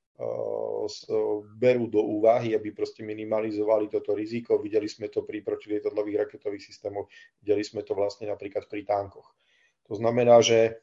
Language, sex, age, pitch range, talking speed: Slovak, male, 40-59, 105-120 Hz, 140 wpm